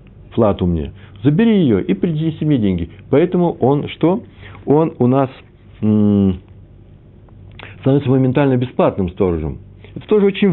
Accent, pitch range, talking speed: native, 100-125 Hz, 125 wpm